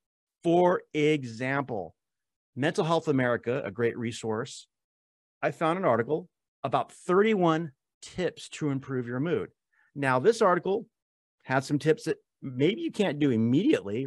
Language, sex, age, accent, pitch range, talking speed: English, male, 30-49, American, 115-150 Hz, 130 wpm